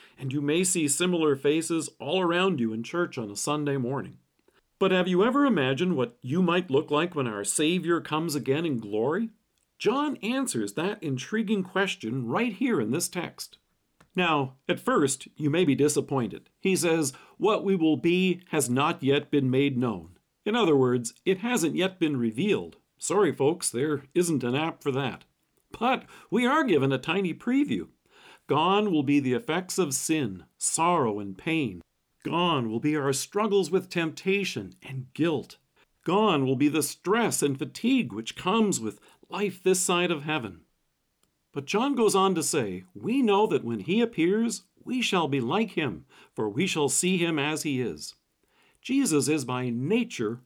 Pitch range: 135-190 Hz